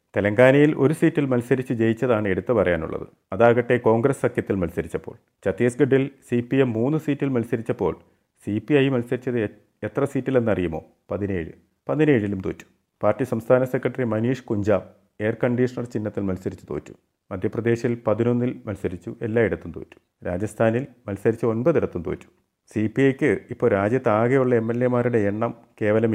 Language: Malayalam